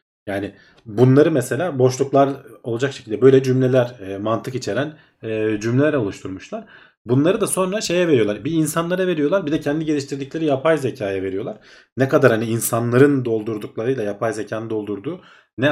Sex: male